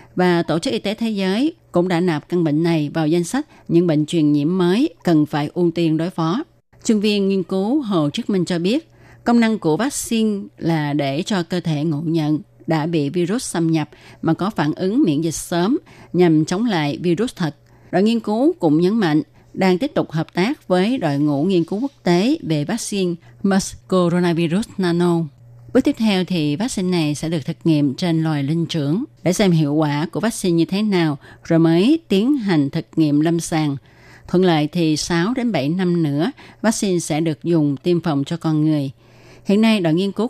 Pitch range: 150-190 Hz